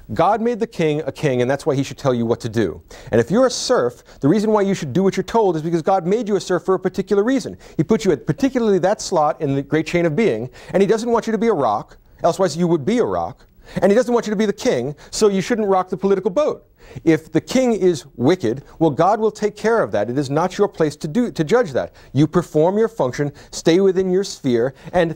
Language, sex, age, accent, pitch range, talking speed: English, male, 40-59, American, 125-195 Hz, 275 wpm